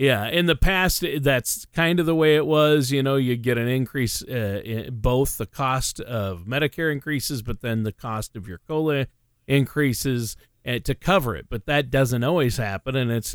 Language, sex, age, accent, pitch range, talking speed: English, male, 40-59, American, 115-145 Hz, 200 wpm